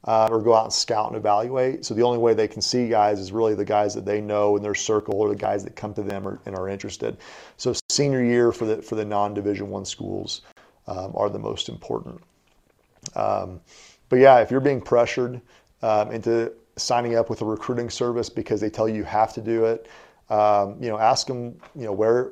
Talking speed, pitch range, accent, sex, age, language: 225 wpm, 105-120 Hz, American, male, 40-59, English